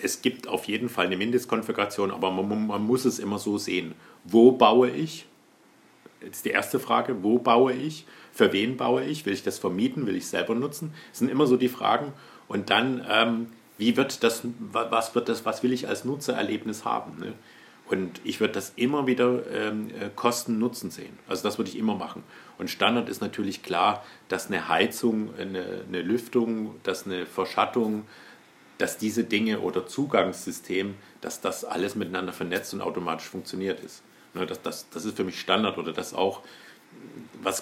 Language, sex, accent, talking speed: German, male, German, 185 wpm